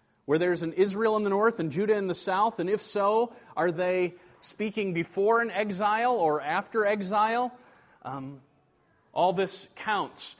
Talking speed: 160 wpm